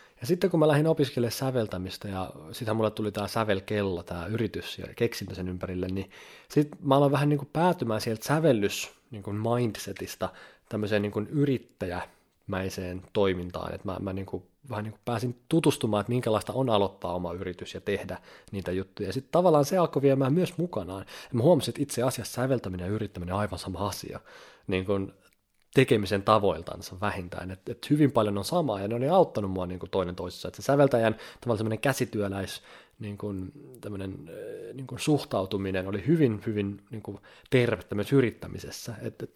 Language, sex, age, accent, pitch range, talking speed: Finnish, male, 30-49, native, 95-135 Hz, 175 wpm